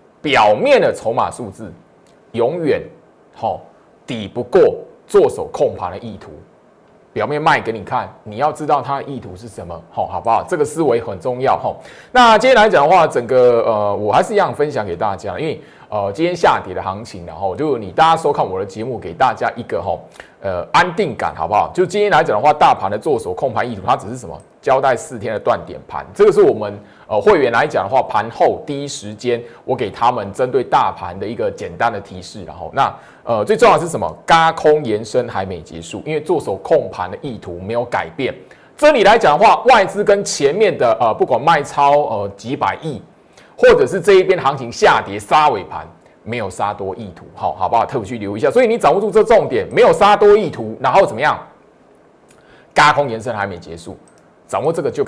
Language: Chinese